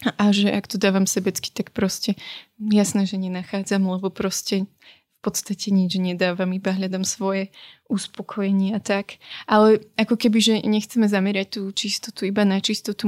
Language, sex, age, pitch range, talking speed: Slovak, female, 20-39, 185-205 Hz, 155 wpm